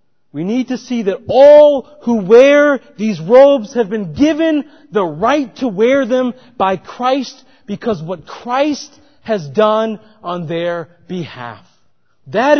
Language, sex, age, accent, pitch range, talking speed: English, male, 40-59, American, 160-245 Hz, 140 wpm